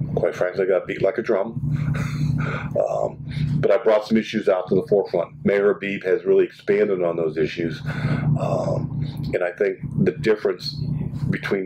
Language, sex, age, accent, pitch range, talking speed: English, male, 40-59, American, 95-150 Hz, 170 wpm